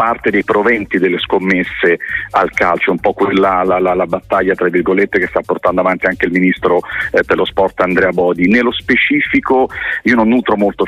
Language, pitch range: Italian, 95-110 Hz